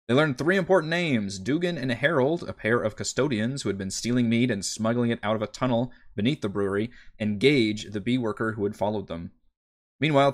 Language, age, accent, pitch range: English, 30-49, American, 105-130 Hz